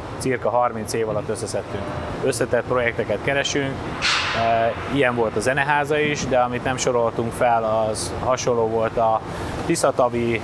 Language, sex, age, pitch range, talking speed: Hungarian, male, 30-49, 115-130 Hz, 130 wpm